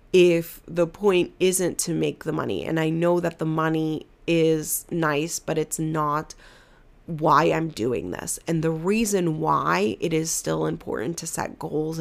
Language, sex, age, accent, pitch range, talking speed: English, female, 30-49, American, 155-170 Hz, 170 wpm